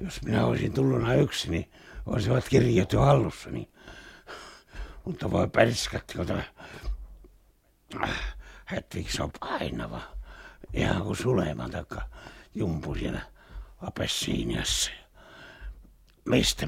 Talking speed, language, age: 90 wpm, Finnish, 60-79